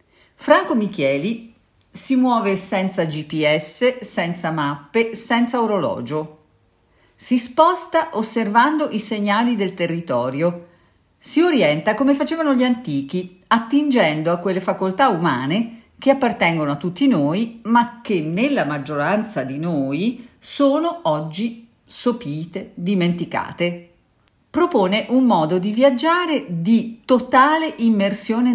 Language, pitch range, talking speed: Italian, 170-255 Hz, 105 wpm